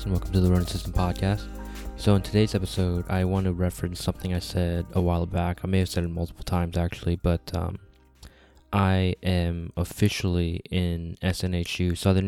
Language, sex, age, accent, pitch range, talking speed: English, male, 20-39, American, 85-95 Hz, 180 wpm